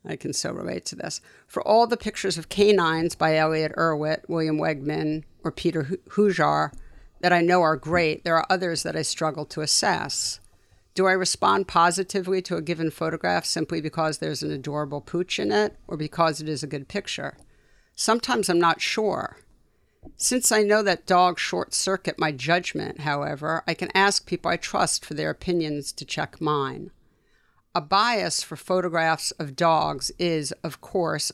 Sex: female